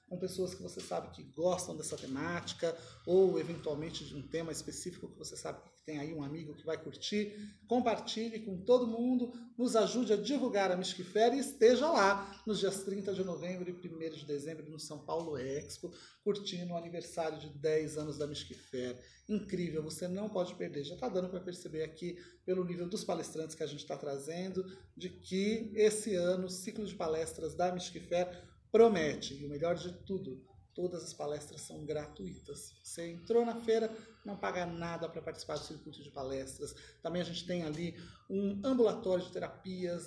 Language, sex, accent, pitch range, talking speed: Portuguese, male, Brazilian, 160-200 Hz, 185 wpm